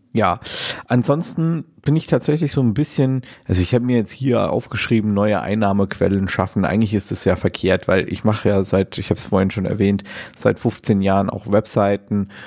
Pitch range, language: 105-125 Hz, German